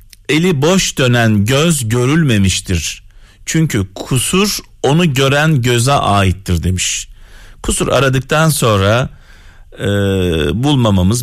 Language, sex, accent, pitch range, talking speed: Turkish, male, native, 95-135 Hz, 90 wpm